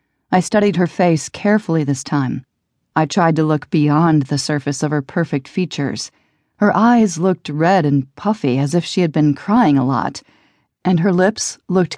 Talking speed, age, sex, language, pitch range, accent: 180 wpm, 40-59, female, English, 145-185 Hz, American